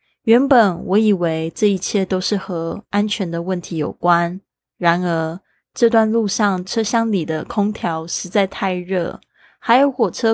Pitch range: 175-210 Hz